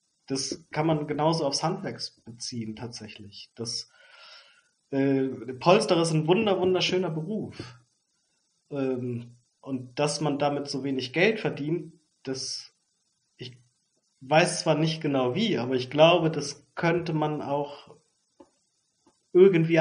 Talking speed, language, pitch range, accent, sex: 120 wpm, German, 125-165 Hz, German, male